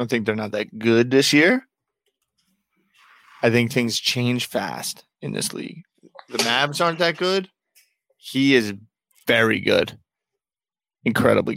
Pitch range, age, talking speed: 110-140 Hz, 20-39, 140 wpm